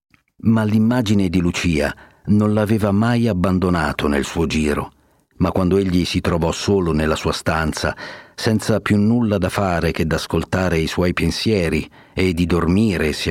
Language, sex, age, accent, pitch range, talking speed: Italian, male, 50-69, native, 80-105 Hz, 155 wpm